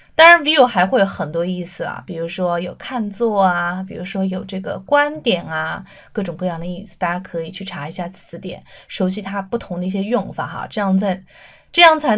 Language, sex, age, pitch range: Chinese, female, 20-39, 180-245 Hz